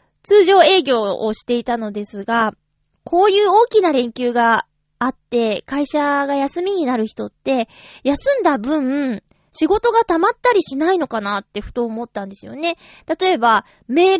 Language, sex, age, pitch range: Japanese, female, 20-39, 220-320 Hz